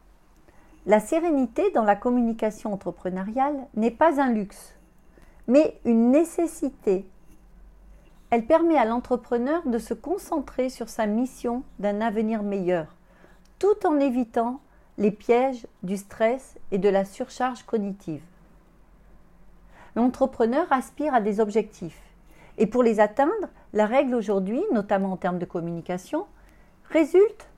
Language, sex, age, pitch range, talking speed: French, female, 40-59, 195-270 Hz, 120 wpm